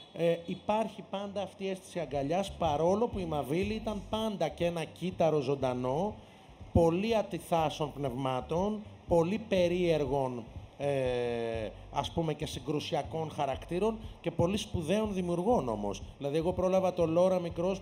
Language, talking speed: Greek, 130 wpm